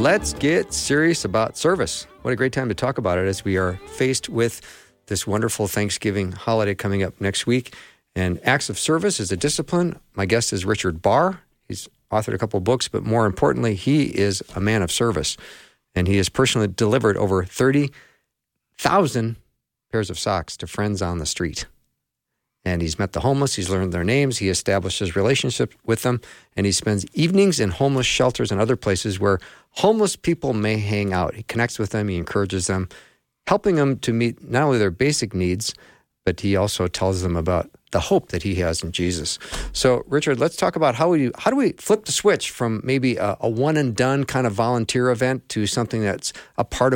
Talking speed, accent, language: 195 wpm, American, English